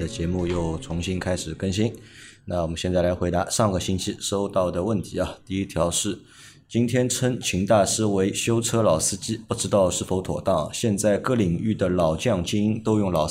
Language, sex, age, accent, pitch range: Chinese, male, 20-39, native, 95-115 Hz